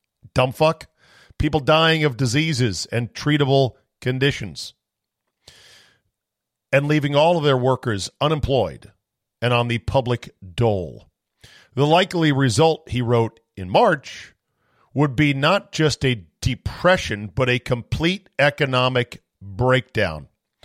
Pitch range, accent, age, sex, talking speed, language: 115-150 Hz, American, 50-69, male, 115 wpm, English